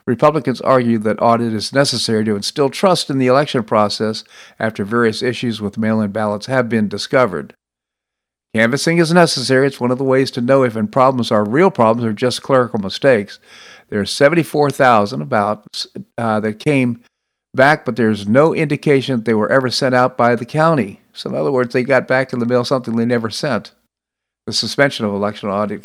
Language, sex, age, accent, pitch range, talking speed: English, male, 50-69, American, 110-135 Hz, 190 wpm